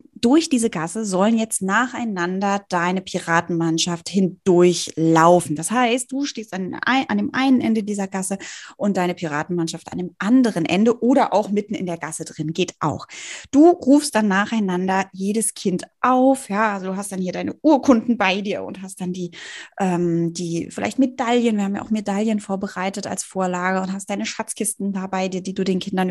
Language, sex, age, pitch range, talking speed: German, female, 20-39, 185-235 Hz, 175 wpm